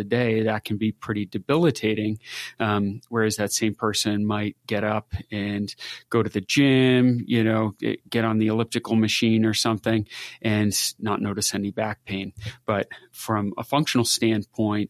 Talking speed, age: 160 wpm, 30-49